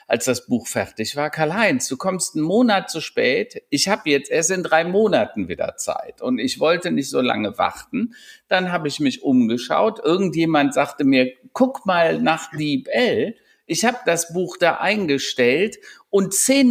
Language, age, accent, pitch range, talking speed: German, 50-69, German, 145-210 Hz, 170 wpm